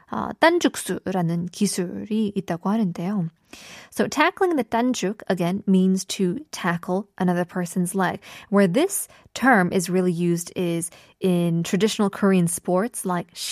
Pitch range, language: 180-240 Hz, Korean